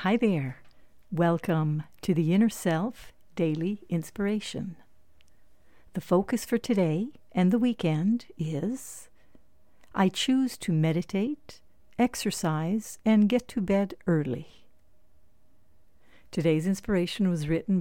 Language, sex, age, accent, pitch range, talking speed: English, female, 60-79, American, 155-200 Hz, 105 wpm